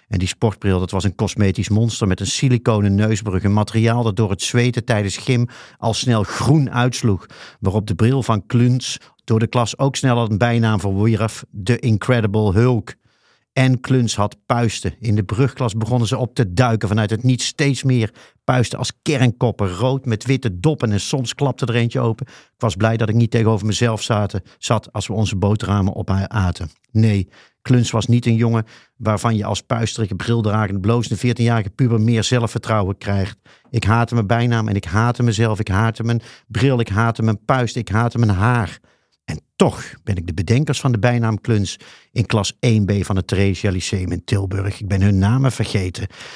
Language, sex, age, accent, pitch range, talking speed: Dutch, male, 50-69, Dutch, 100-125 Hz, 195 wpm